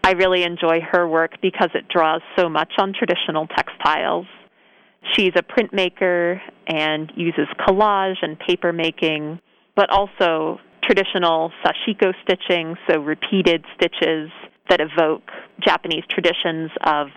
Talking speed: 120 wpm